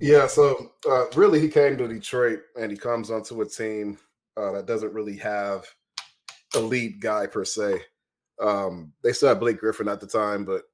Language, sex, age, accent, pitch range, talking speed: English, male, 20-39, American, 100-155 Hz, 190 wpm